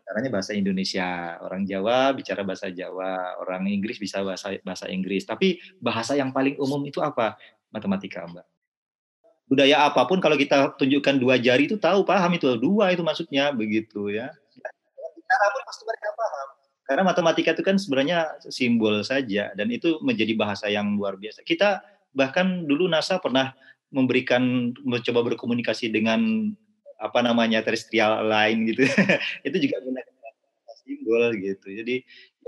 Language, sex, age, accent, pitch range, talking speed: Indonesian, male, 30-49, native, 105-165 Hz, 135 wpm